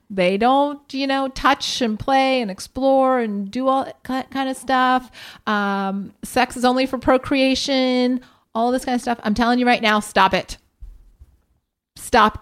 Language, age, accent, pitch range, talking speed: English, 30-49, American, 195-265 Hz, 170 wpm